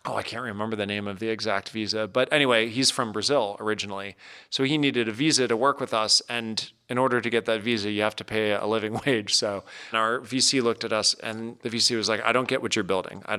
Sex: male